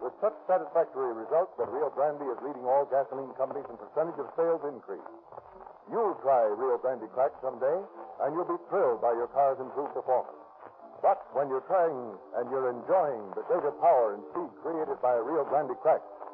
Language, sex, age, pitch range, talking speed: English, male, 60-79, 140-190 Hz, 180 wpm